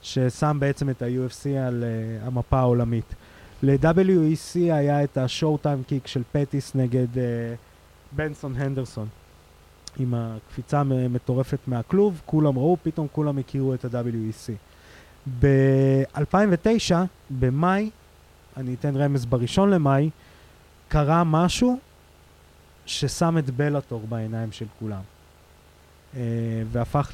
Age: 20-39